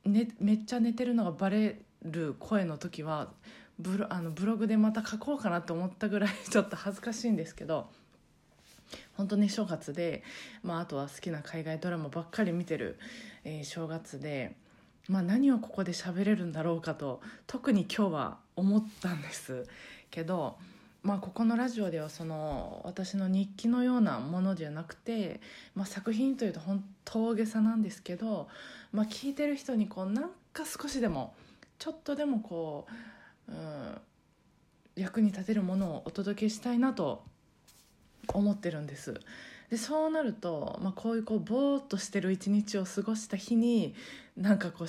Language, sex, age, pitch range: Japanese, female, 20-39, 175-225 Hz